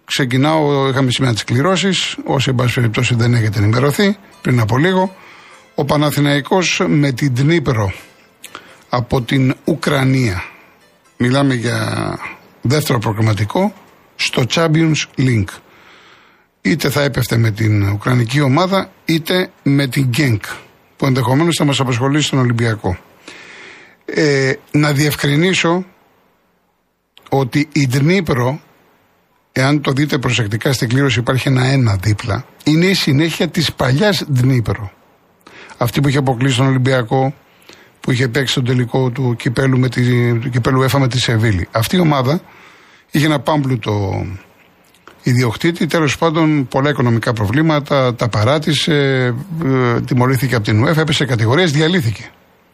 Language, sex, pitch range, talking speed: Greek, male, 125-150 Hz, 125 wpm